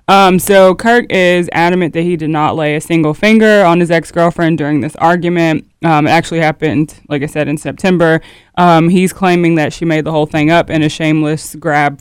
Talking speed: 215 wpm